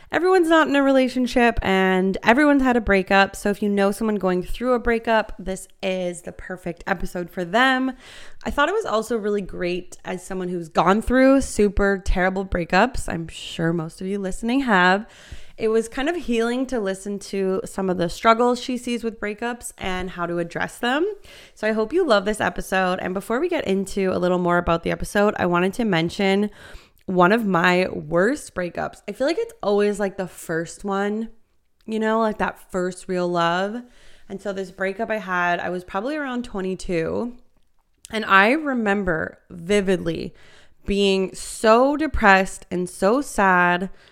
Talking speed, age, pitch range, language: 180 wpm, 20-39, 180-225 Hz, English